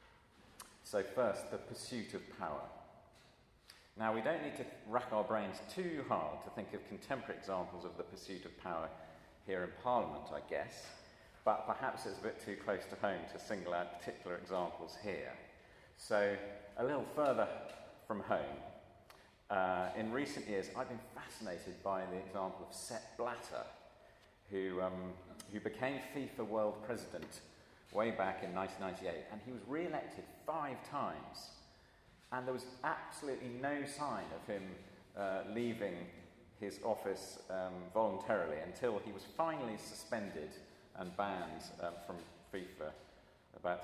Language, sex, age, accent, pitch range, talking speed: English, male, 40-59, British, 95-125 Hz, 145 wpm